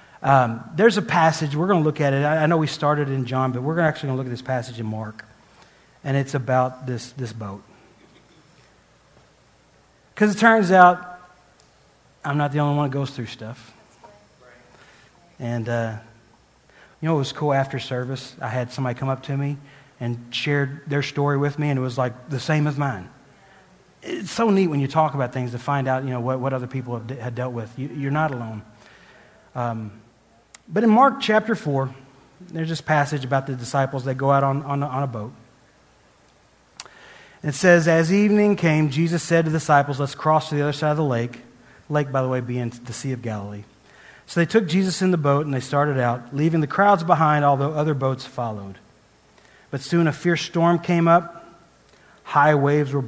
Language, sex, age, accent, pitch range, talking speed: English, male, 30-49, American, 125-155 Hz, 205 wpm